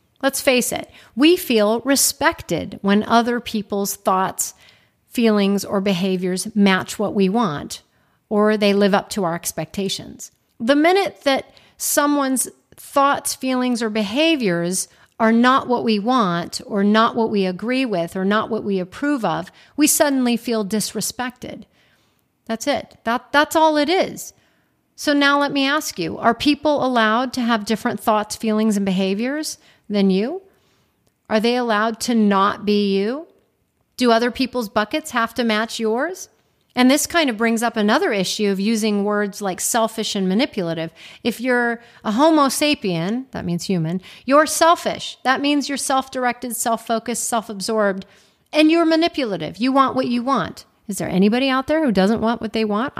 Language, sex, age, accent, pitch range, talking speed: English, female, 40-59, American, 205-265 Hz, 160 wpm